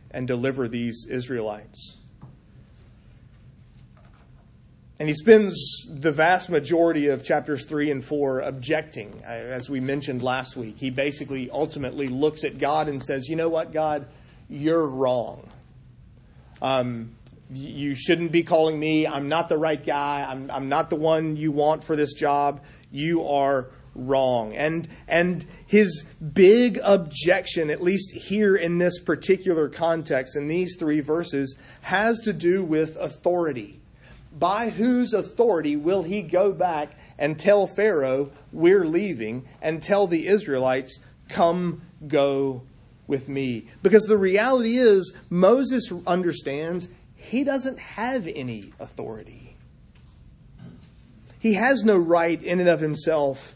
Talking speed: 135 wpm